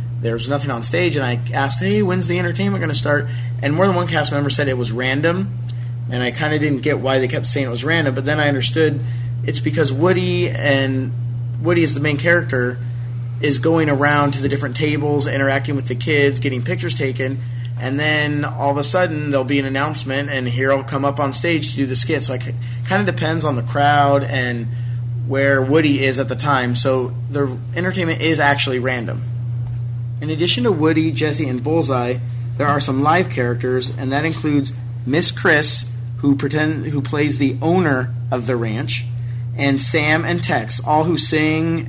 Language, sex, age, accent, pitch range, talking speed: English, male, 30-49, American, 120-150 Hz, 205 wpm